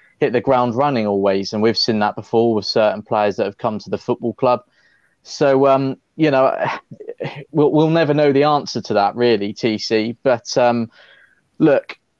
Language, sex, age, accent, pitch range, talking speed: English, male, 20-39, British, 110-130 Hz, 180 wpm